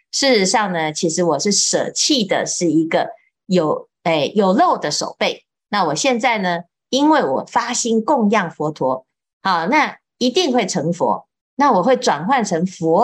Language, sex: Chinese, female